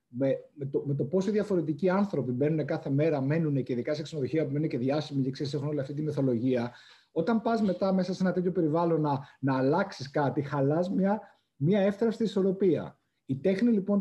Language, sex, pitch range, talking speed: Greek, male, 135-175 Hz, 195 wpm